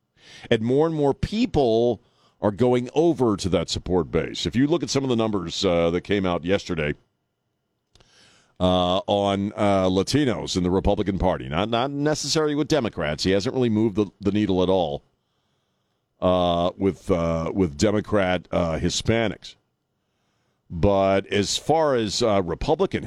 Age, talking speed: 50-69, 155 wpm